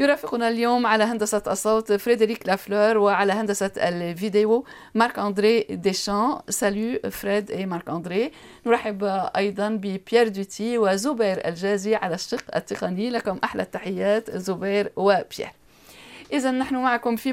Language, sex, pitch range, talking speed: Arabic, female, 175-215 Hz, 120 wpm